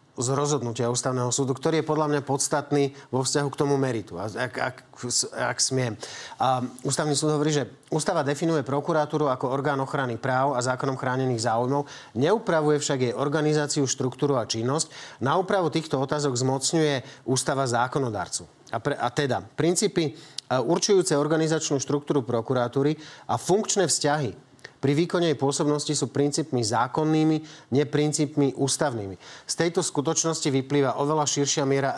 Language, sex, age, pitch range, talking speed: Slovak, male, 40-59, 125-150 Hz, 145 wpm